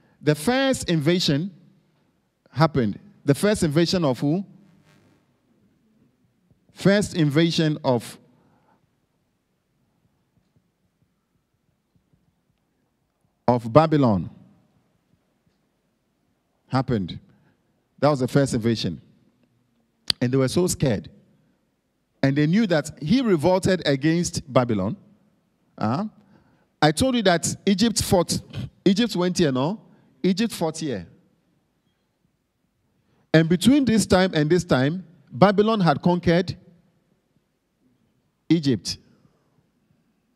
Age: 50-69